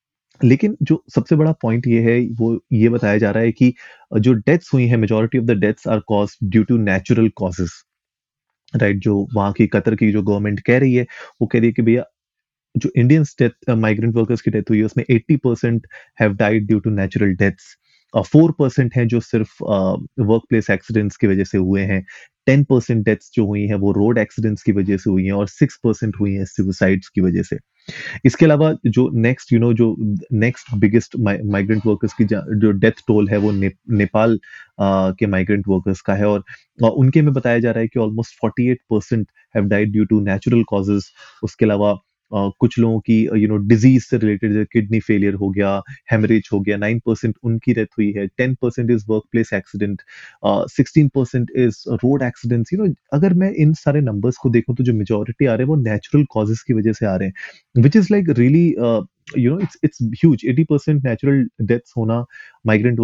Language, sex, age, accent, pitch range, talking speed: Hindi, male, 30-49, native, 105-125 Hz, 185 wpm